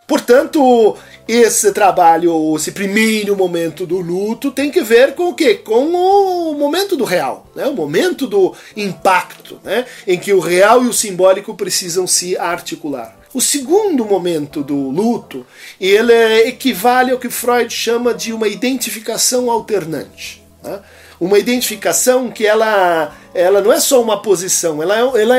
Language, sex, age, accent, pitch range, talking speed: Portuguese, male, 40-59, Brazilian, 185-270 Hz, 145 wpm